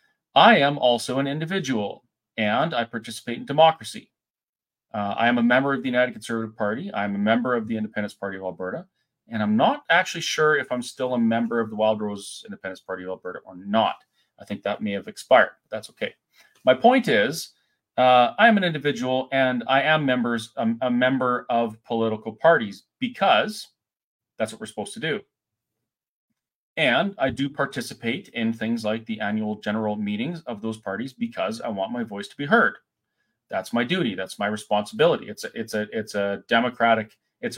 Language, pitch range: English, 105-135 Hz